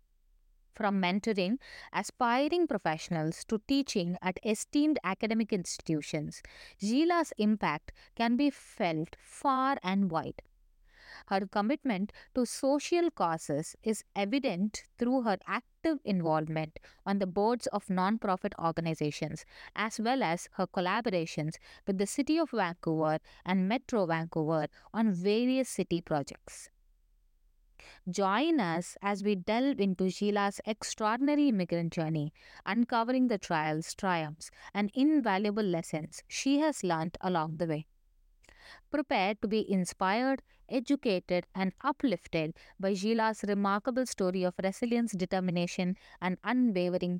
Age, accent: 20-39, Indian